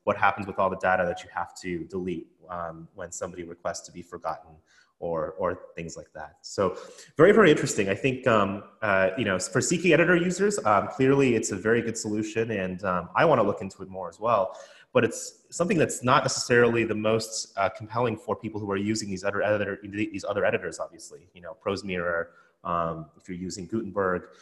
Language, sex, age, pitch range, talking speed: English, male, 30-49, 100-120 Hz, 210 wpm